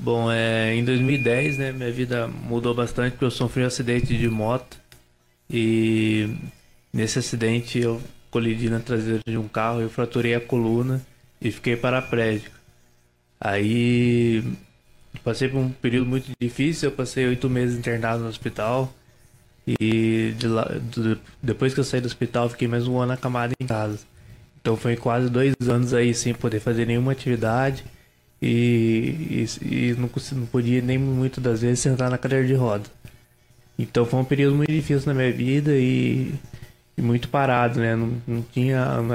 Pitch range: 115-130 Hz